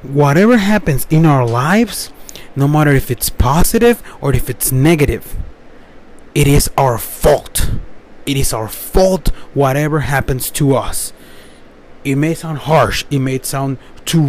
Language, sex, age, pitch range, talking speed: English, male, 30-49, 140-185 Hz, 145 wpm